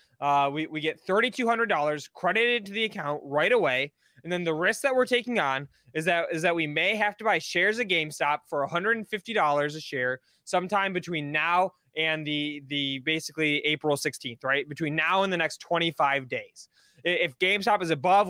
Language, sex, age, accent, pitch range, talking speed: English, male, 20-39, American, 155-205 Hz, 185 wpm